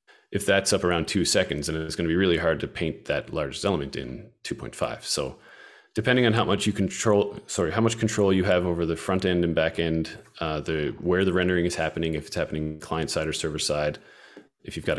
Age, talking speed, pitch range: 30-49, 230 wpm, 80-100 Hz